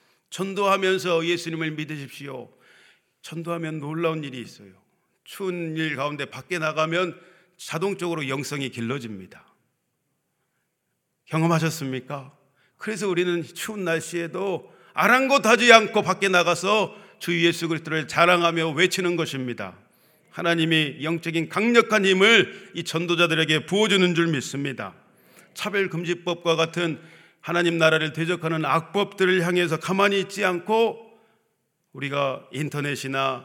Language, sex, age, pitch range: Korean, male, 40-59, 145-180 Hz